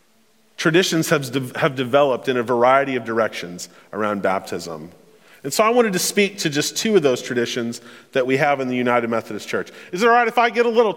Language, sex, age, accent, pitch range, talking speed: English, male, 40-59, American, 125-205 Hz, 220 wpm